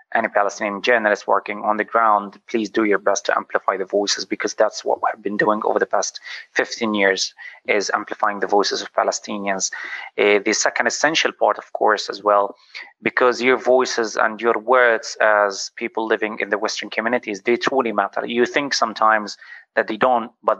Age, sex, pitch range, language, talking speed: 30-49, male, 105-120 Hz, English, 185 wpm